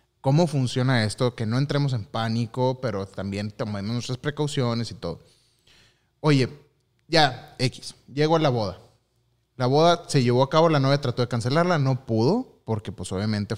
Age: 30-49